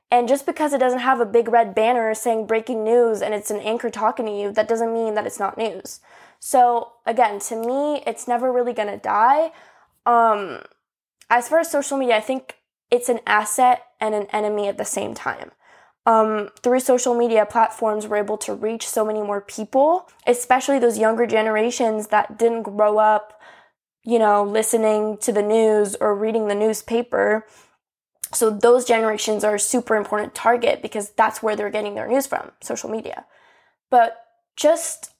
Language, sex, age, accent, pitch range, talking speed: English, female, 10-29, American, 215-245 Hz, 180 wpm